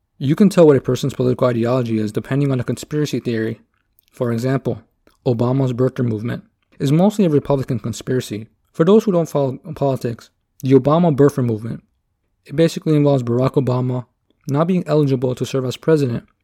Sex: male